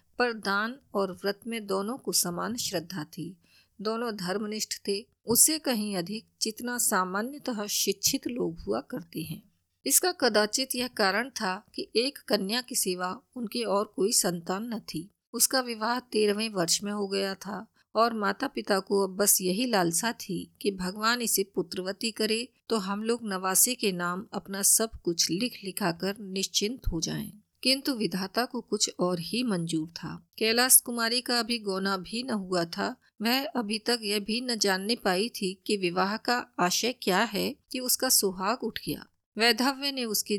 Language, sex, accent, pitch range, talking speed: Hindi, female, native, 195-235 Hz, 170 wpm